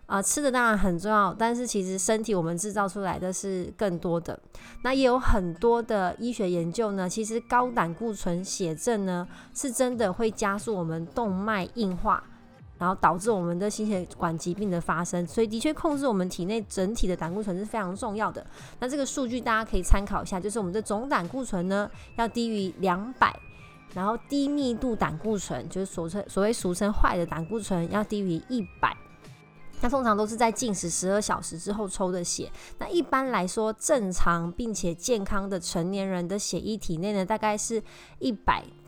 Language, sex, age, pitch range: Chinese, female, 20-39, 180-230 Hz